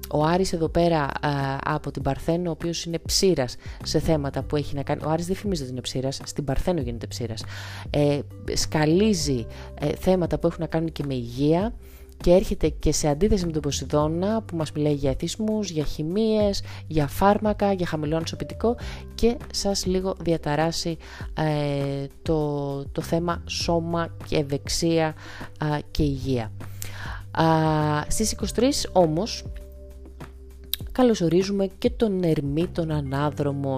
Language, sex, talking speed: Greek, female, 145 wpm